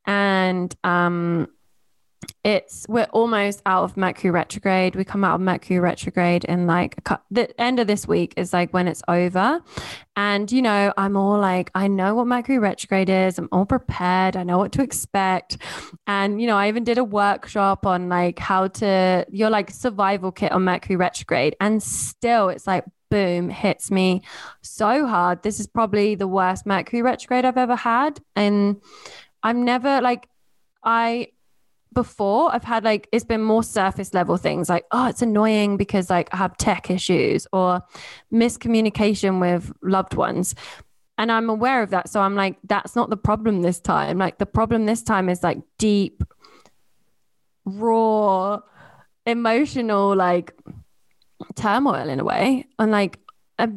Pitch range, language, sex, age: 185-230 Hz, English, female, 10-29